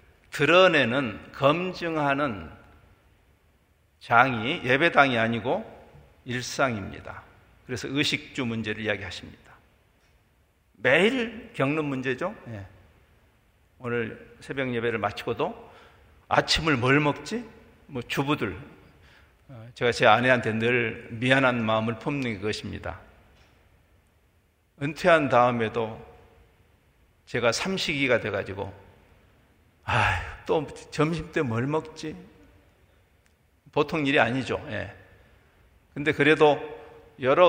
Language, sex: Korean, male